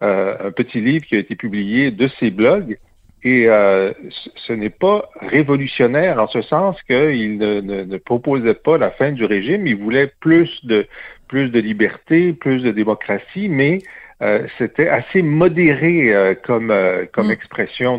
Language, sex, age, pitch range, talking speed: French, male, 50-69, 105-140 Hz, 170 wpm